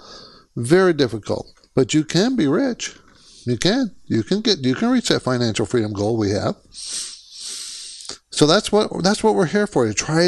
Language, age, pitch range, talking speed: English, 60-79, 120-170 Hz, 180 wpm